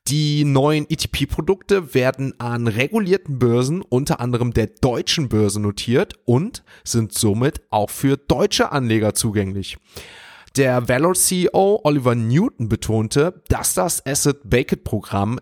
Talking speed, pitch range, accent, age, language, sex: 115 wpm, 115-155 Hz, German, 30-49, German, male